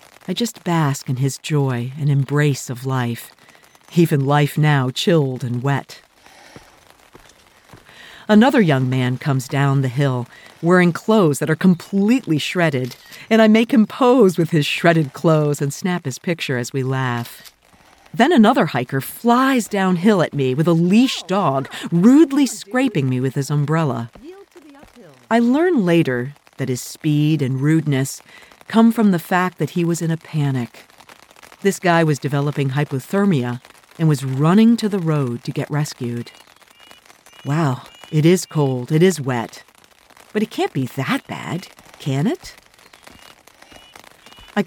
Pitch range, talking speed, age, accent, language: 135-180 Hz, 145 wpm, 50-69, American, English